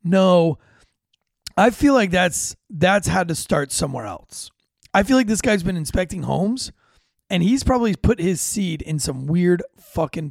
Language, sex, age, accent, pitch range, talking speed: English, male, 30-49, American, 155-220 Hz, 170 wpm